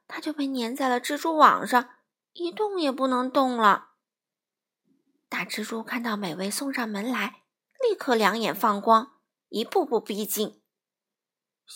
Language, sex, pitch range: Chinese, female, 225-320 Hz